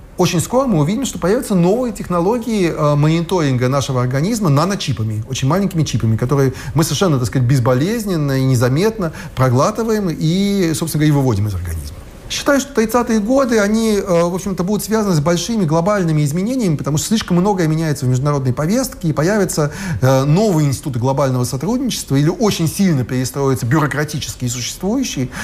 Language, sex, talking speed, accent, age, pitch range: Russian, male, 150 wpm, native, 30-49, 130-185 Hz